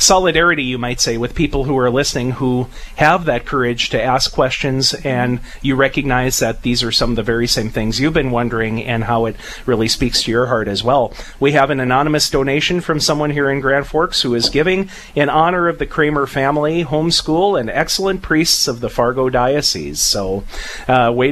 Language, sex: English, male